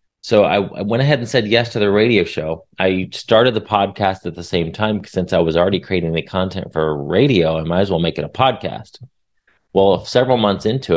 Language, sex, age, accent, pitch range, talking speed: English, male, 30-49, American, 90-110 Hz, 225 wpm